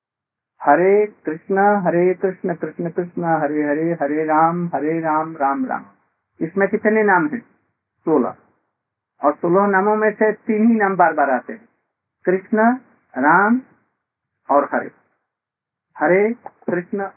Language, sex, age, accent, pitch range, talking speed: Hindi, male, 50-69, native, 160-210 Hz, 130 wpm